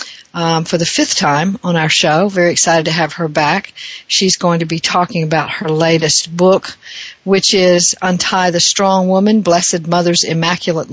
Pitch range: 150-185 Hz